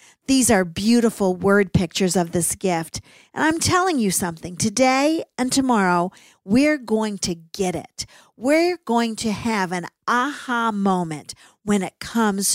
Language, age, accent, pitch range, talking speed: English, 50-69, American, 190-265 Hz, 150 wpm